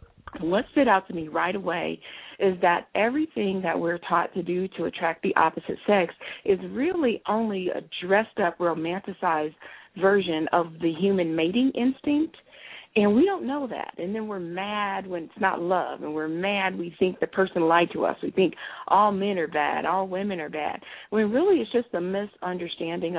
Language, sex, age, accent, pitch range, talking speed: English, female, 40-59, American, 170-215 Hz, 185 wpm